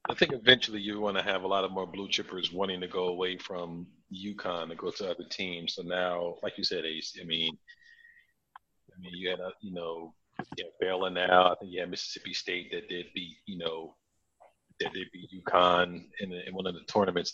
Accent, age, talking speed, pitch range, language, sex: American, 40-59, 220 wpm, 90-105 Hz, English, male